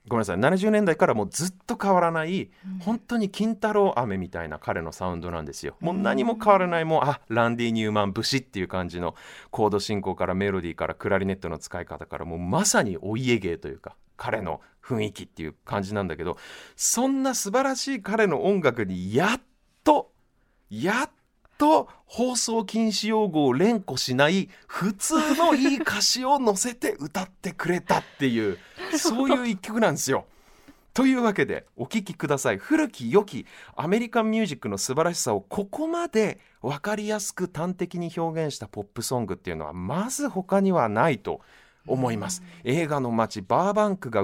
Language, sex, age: Japanese, male, 30-49